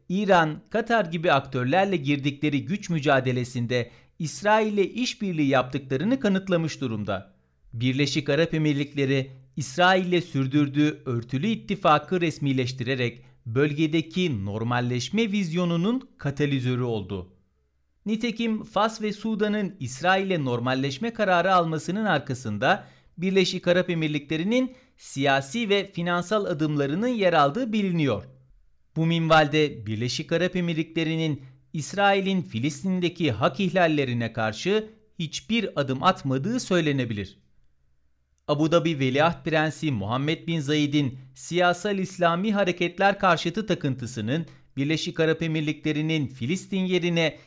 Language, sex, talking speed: Turkish, male, 100 wpm